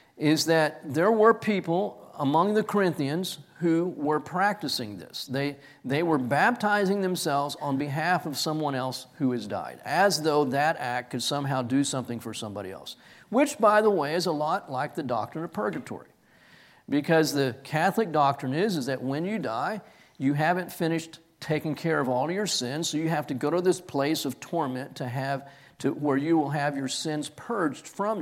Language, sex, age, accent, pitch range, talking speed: English, male, 40-59, American, 135-170 Hz, 190 wpm